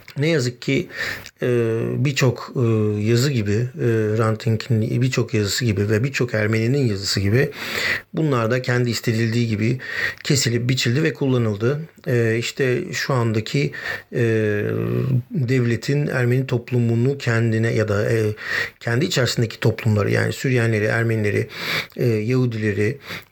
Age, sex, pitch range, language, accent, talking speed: 50-69, male, 110-130 Hz, Turkish, native, 100 wpm